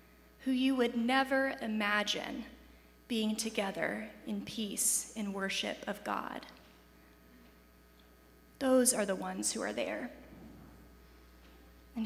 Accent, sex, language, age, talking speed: American, female, English, 20-39, 105 wpm